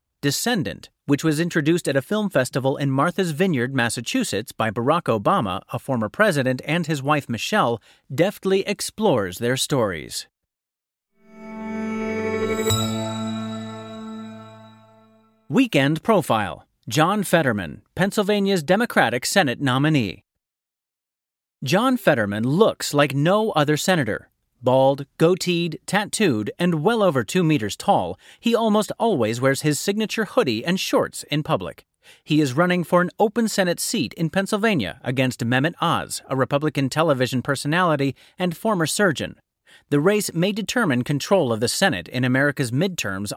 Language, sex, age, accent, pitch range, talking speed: English, male, 30-49, American, 130-200 Hz, 125 wpm